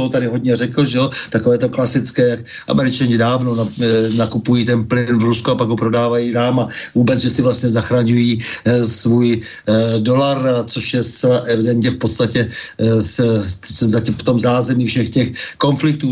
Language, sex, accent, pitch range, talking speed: Czech, male, native, 115-130 Hz, 180 wpm